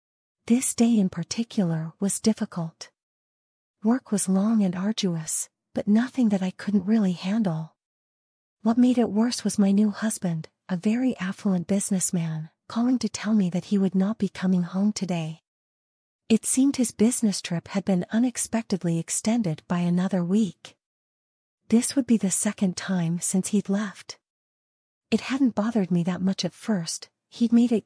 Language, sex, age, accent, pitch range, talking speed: English, female, 40-59, American, 185-225 Hz, 160 wpm